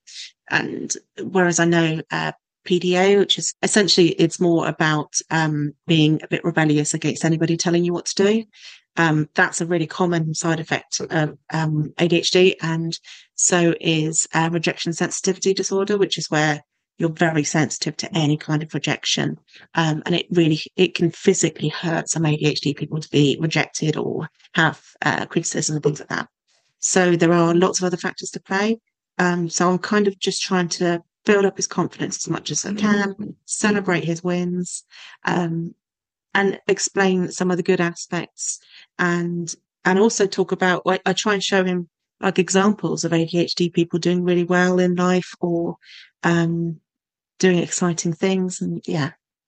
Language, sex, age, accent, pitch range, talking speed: English, female, 40-59, British, 165-190 Hz, 170 wpm